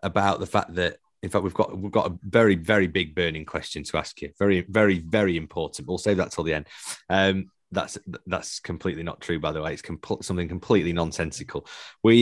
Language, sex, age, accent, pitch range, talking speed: English, male, 30-49, British, 90-115 Hz, 210 wpm